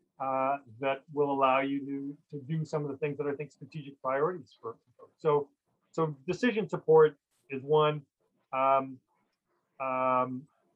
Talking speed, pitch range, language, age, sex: 145 wpm, 135-160 Hz, English, 40-59, male